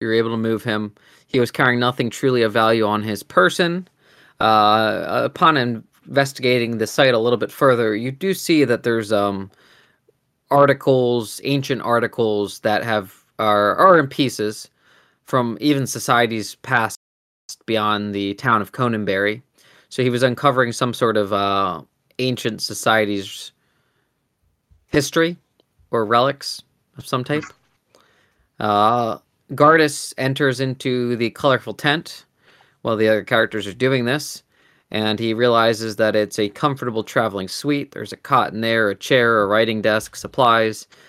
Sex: male